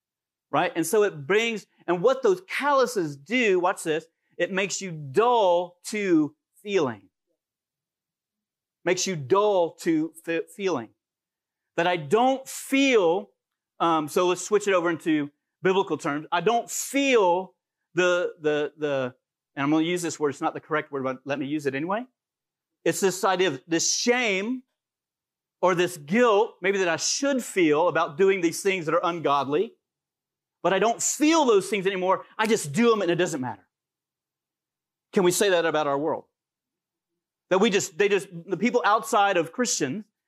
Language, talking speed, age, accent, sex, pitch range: English, 170 wpm, 40-59, American, male, 170-240 Hz